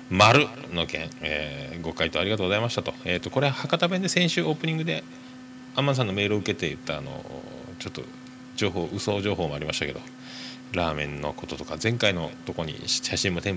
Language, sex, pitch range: Japanese, male, 105-135 Hz